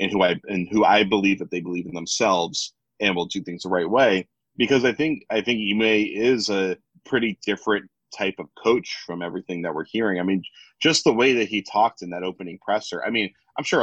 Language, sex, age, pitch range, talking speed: English, male, 30-49, 90-105 Hz, 230 wpm